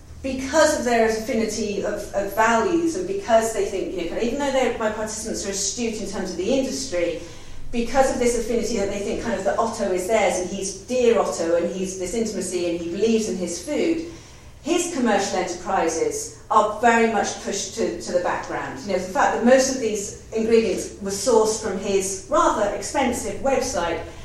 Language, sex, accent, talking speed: English, female, British, 195 wpm